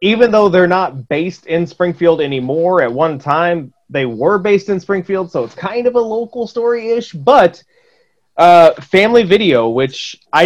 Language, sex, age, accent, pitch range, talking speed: English, male, 30-49, American, 130-180 Hz, 165 wpm